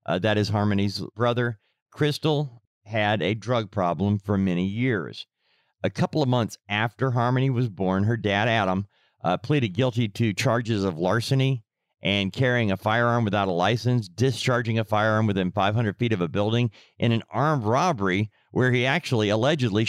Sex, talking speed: male, 165 wpm